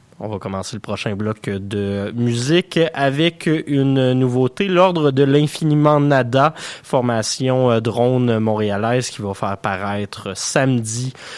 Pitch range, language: 105-135 Hz, French